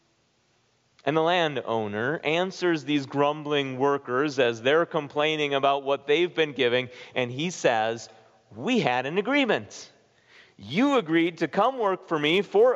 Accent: American